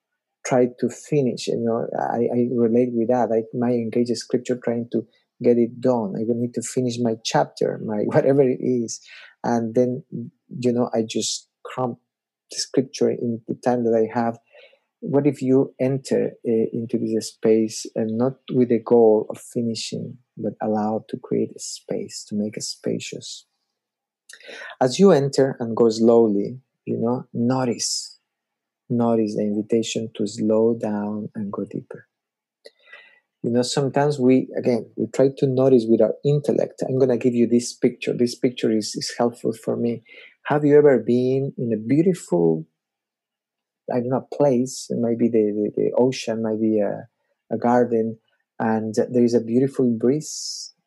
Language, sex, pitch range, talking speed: English, male, 115-130 Hz, 170 wpm